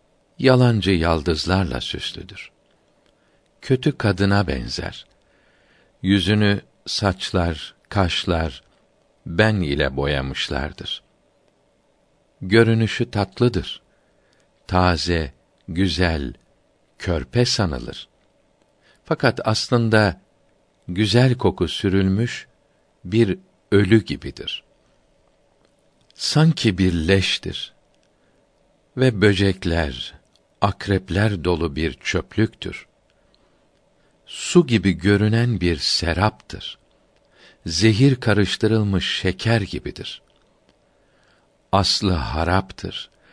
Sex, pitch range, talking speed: male, 85-110 Hz, 65 wpm